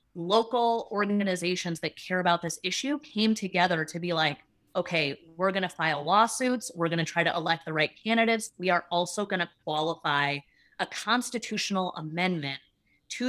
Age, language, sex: 30-49, English, female